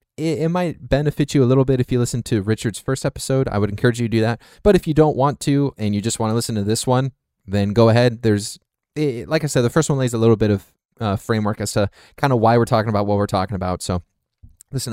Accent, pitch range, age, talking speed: American, 105-130 Hz, 20-39, 270 wpm